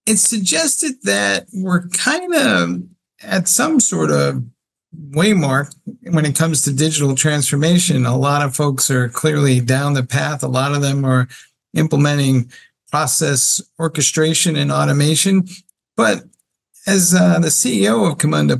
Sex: male